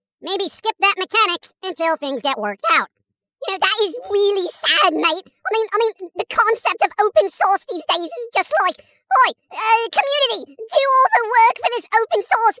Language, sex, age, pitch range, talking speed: English, male, 40-59, 290-395 Hz, 195 wpm